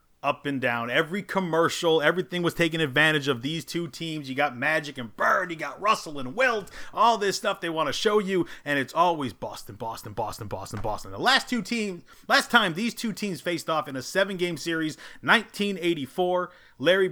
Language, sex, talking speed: English, male, 195 wpm